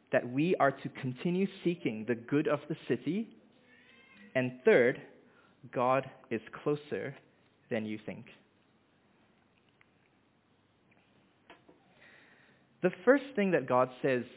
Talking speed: 105 wpm